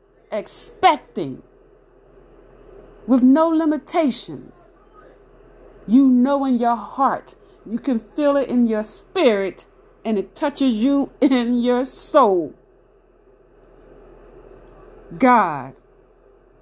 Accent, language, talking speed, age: American, English, 85 wpm, 40-59